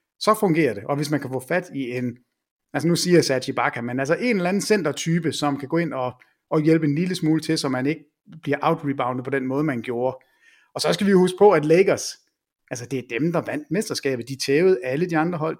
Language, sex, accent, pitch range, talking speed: English, male, Danish, 130-175 Hz, 245 wpm